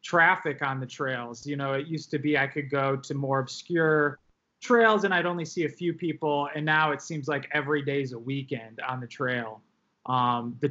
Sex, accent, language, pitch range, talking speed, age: male, American, English, 130-150 Hz, 220 wpm, 20-39